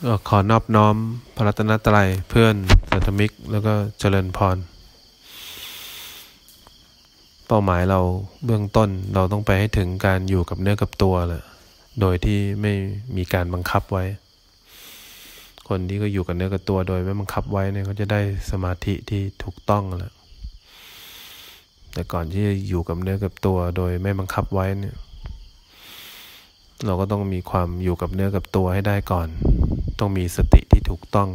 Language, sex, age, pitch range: English, male, 20-39, 90-100 Hz